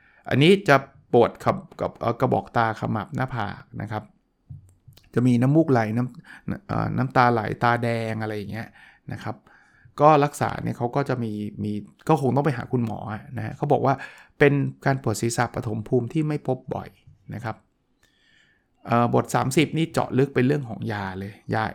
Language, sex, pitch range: Thai, male, 110-140 Hz